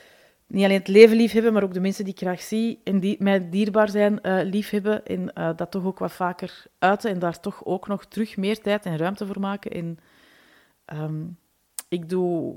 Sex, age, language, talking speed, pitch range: female, 30-49, Dutch, 210 wpm, 170-200 Hz